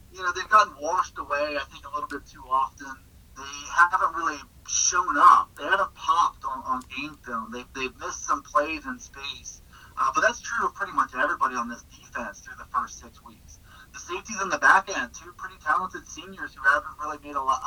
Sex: male